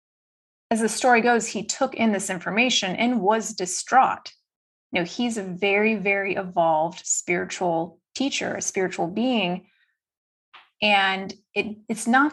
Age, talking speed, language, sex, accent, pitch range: 30-49, 135 wpm, English, female, American, 185-230 Hz